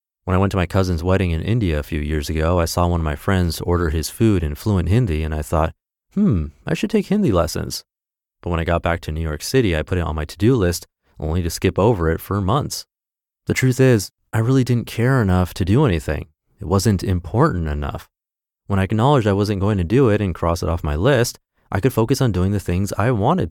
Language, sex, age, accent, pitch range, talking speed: English, male, 30-49, American, 85-120 Hz, 245 wpm